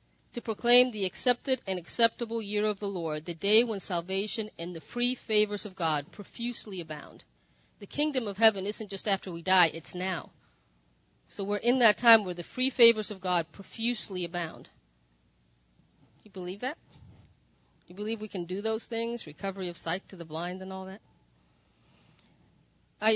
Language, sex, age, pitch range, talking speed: English, female, 40-59, 175-230 Hz, 170 wpm